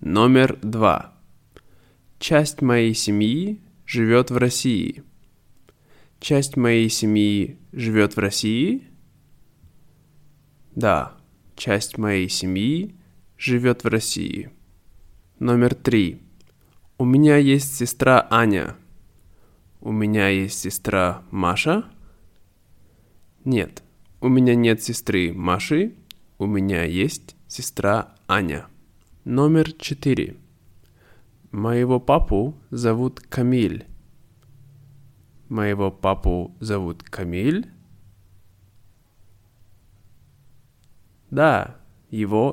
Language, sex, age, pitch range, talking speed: Russian, male, 20-39, 95-130 Hz, 80 wpm